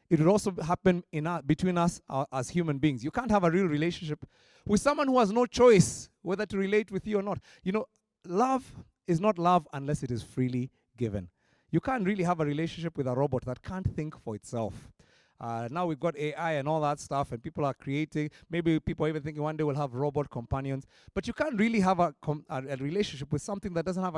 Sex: male